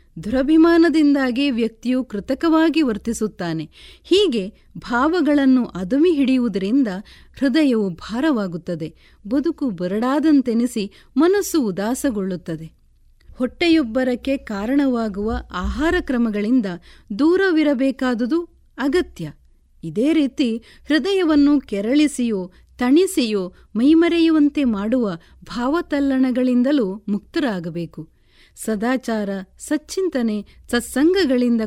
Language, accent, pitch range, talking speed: Kannada, native, 200-290 Hz, 60 wpm